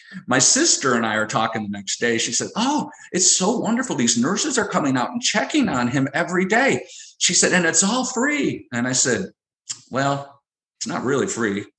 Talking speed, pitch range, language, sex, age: 205 wpm, 115-170 Hz, English, male, 50-69